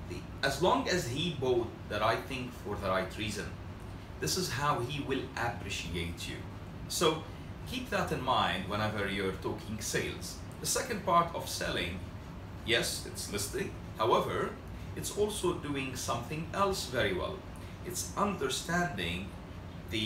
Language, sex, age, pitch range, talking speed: English, male, 30-49, 90-130 Hz, 145 wpm